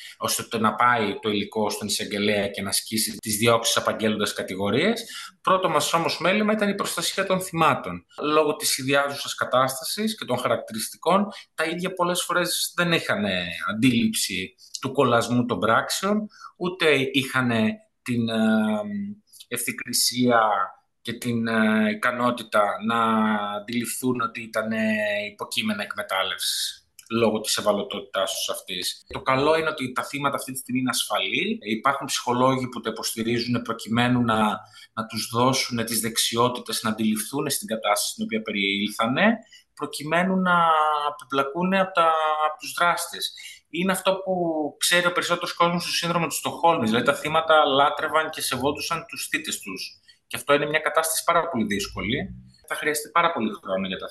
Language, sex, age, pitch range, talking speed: Greek, male, 20-39, 115-170 Hz, 145 wpm